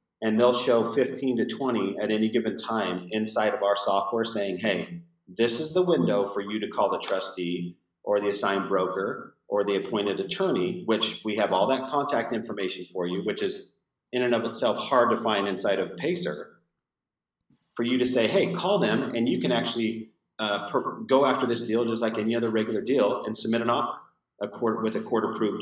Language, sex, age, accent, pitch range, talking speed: English, male, 40-59, American, 100-125 Hz, 200 wpm